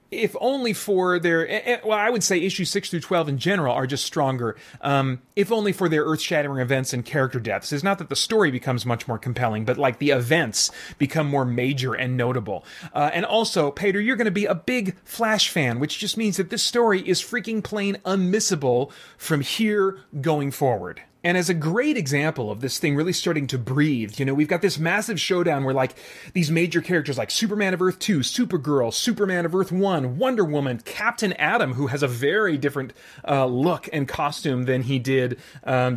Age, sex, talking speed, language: 30-49, male, 205 wpm, English